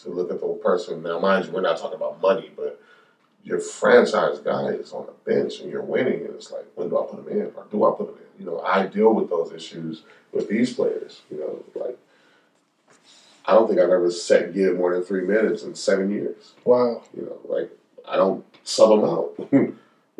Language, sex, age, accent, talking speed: English, male, 30-49, American, 225 wpm